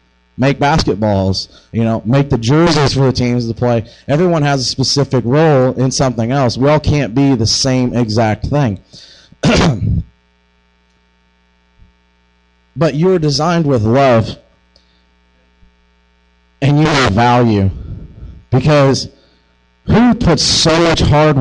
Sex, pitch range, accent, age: male, 100-145 Hz, American, 30-49